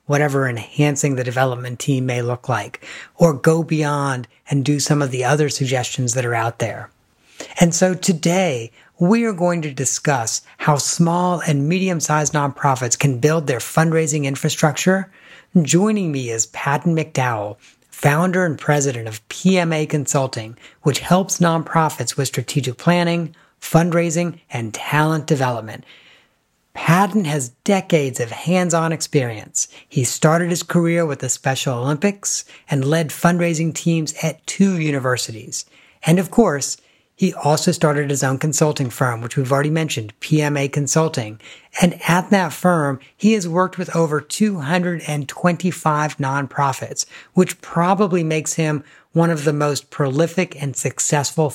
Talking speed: 140 wpm